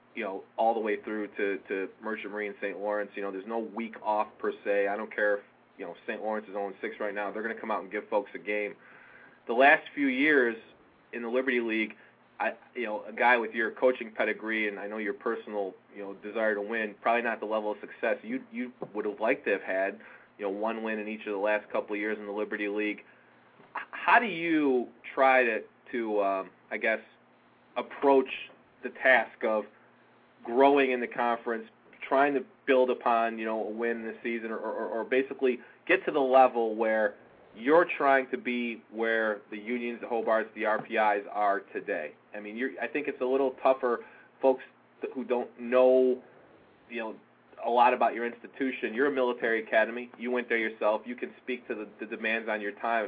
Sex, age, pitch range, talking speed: male, 20-39, 105-125 Hz, 210 wpm